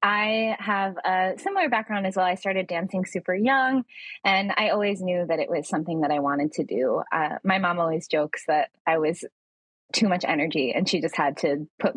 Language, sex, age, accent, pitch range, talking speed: English, female, 20-39, American, 170-230 Hz, 210 wpm